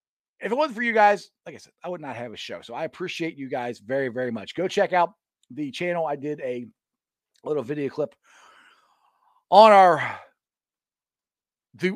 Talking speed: 185 wpm